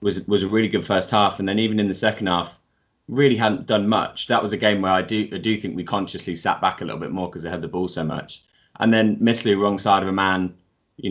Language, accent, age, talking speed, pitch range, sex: English, British, 20-39, 280 wpm, 90-110 Hz, male